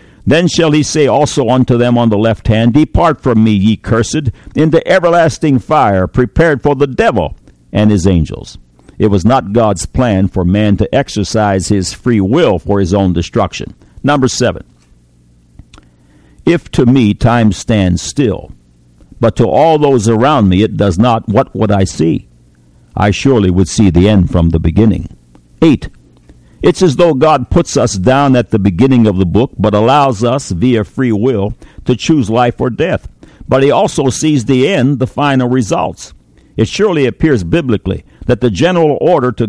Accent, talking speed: American, 175 wpm